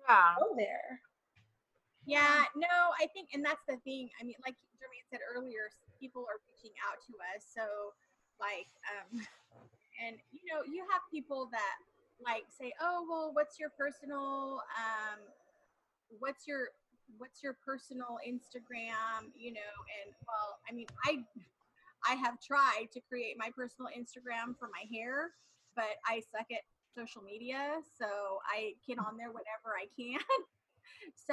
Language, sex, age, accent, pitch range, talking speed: English, female, 30-49, American, 225-290 Hz, 150 wpm